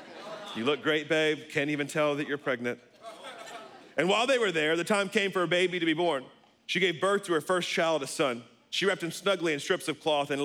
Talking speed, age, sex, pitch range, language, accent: 240 wpm, 40-59, male, 150-185 Hz, English, American